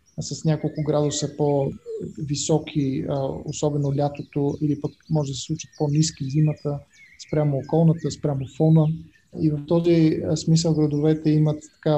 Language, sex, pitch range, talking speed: Bulgarian, male, 145-165 Hz, 125 wpm